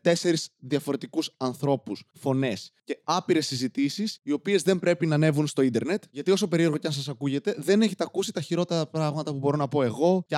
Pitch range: 125-165 Hz